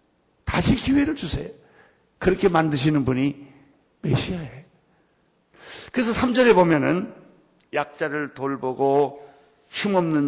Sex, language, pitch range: male, Korean, 140-215 Hz